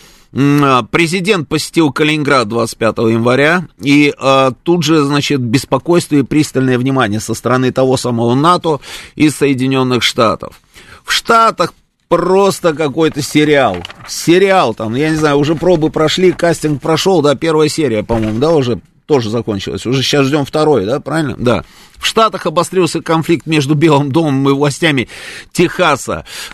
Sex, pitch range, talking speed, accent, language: male, 125-160 Hz, 140 wpm, native, Russian